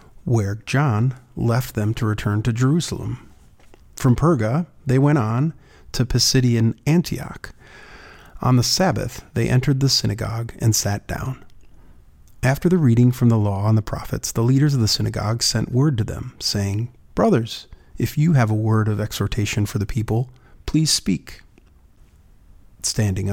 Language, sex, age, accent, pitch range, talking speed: English, male, 40-59, American, 105-125 Hz, 150 wpm